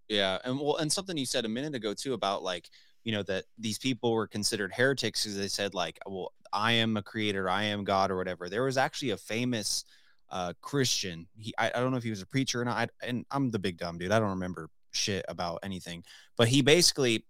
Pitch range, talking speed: 105-130 Hz, 240 wpm